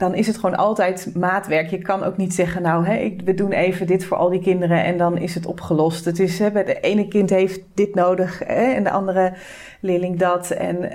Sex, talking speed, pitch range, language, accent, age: female, 230 wpm, 175-195 Hz, Dutch, Dutch, 30-49